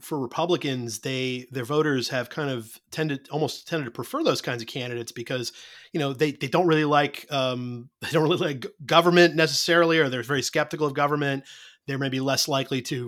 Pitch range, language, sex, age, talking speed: 130-150 Hz, English, male, 30-49, 200 wpm